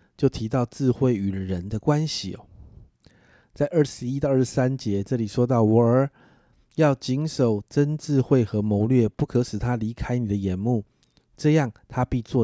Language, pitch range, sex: Chinese, 100-130 Hz, male